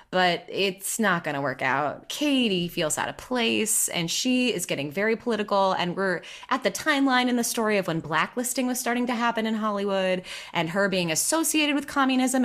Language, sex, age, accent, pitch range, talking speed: English, female, 20-39, American, 170-220 Hz, 200 wpm